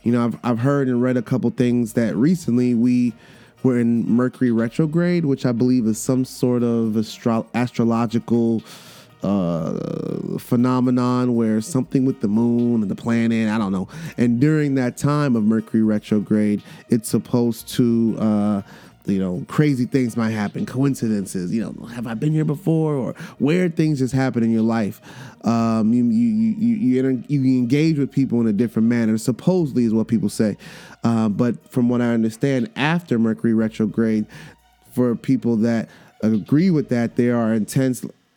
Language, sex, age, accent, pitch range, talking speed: English, male, 20-39, American, 115-140 Hz, 170 wpm